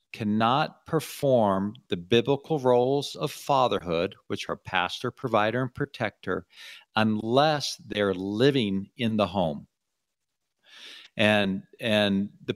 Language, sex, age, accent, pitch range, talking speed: English, male, 50-69, American, 105-140 Hz, 105 wpm